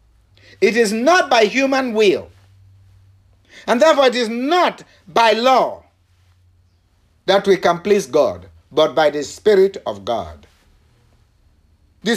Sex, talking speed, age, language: male, 125 wpm, 60-79, English